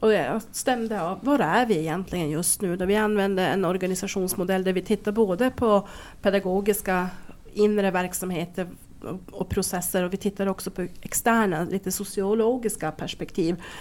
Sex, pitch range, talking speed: female, 180-220 Hz, 150 wpm